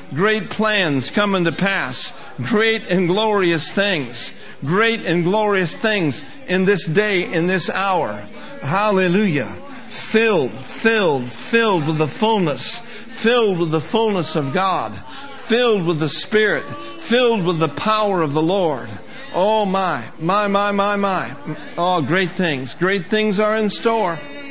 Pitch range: 170-215 Hz